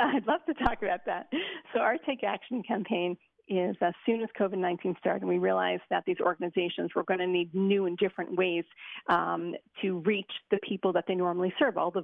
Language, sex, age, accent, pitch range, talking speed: English, female, 40-59, American, 185-225 Hz, 210 wpm